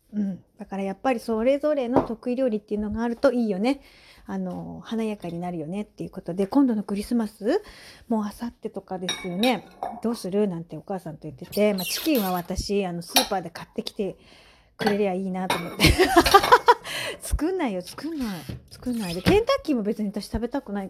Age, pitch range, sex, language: 40-59, 180-230 Hz, female, Japanese